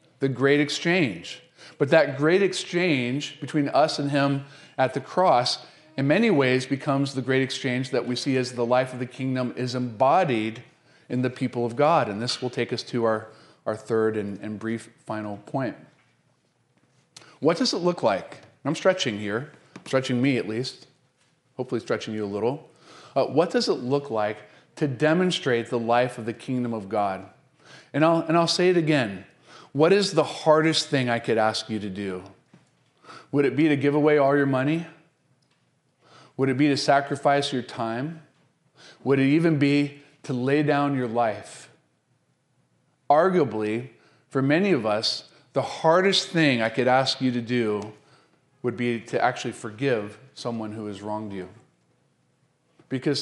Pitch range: 115-150 Hz